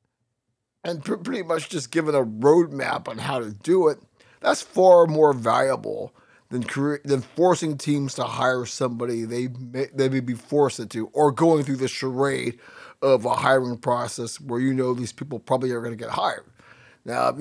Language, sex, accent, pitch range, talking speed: English, male, American, 115-150 Hz, 170 wpm